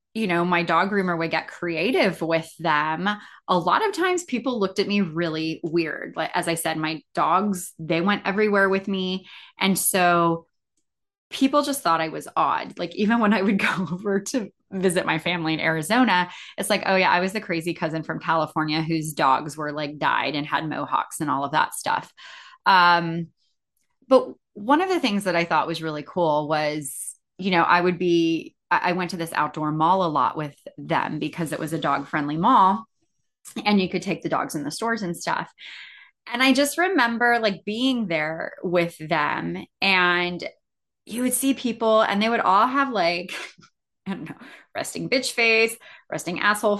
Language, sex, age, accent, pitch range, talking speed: English, female, 20-39, American, 165-220 Hz, 190 wpm